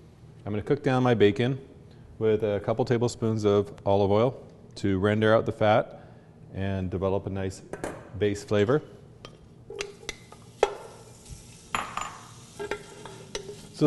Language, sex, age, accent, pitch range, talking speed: English, male, 40-59, American, 105-135 Hz, 110 wpm